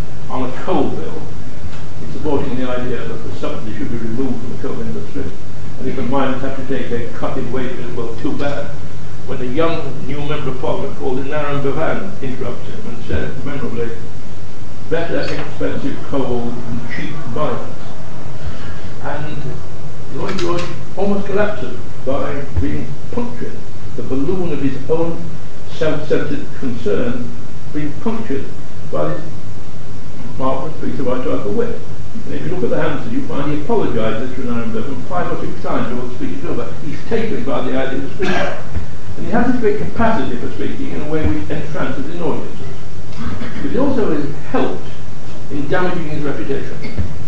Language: English